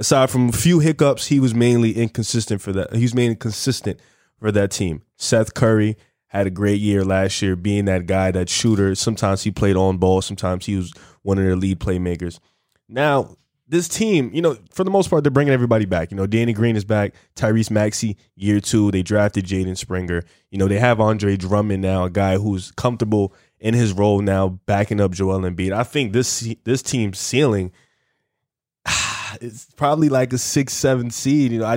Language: English